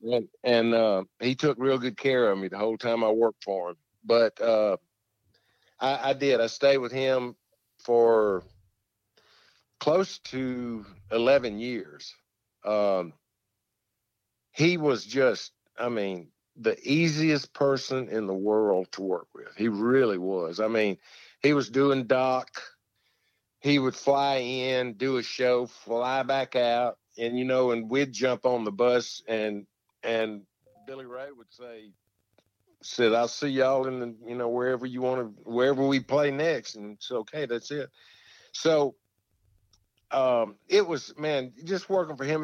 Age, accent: 50-69, American